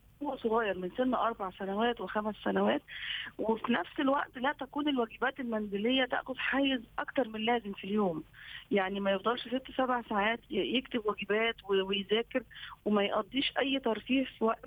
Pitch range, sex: 200-250 Hz, female